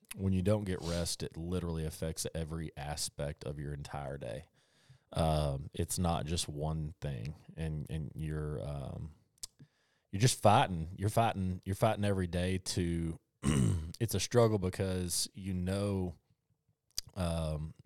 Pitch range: 80-95 Hz